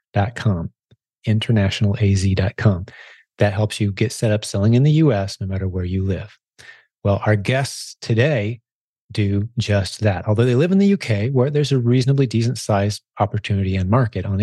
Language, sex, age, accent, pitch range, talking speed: English, male, 30-49, American, 100-125 Hz, 170 wpm